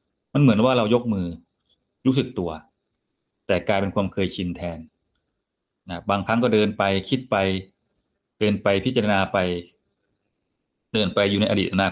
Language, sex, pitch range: Thai, male, 95-130 Hz